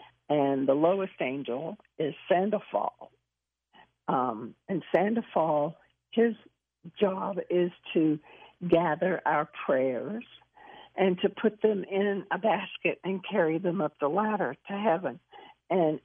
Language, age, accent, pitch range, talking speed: English, 60-79, American, 150-200 Hz, 120 wpm